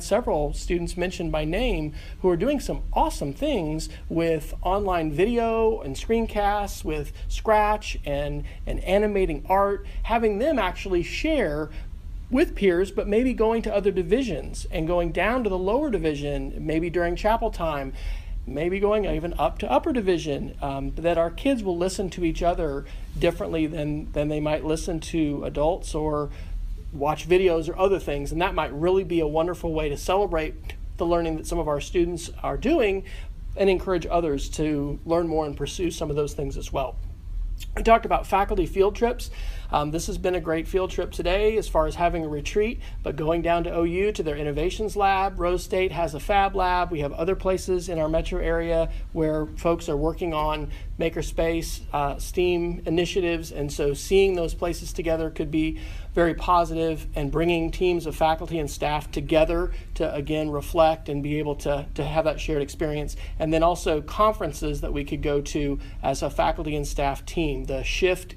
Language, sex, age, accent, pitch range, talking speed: English, male, 40-59, American, 150-185 Hz, 185 wpm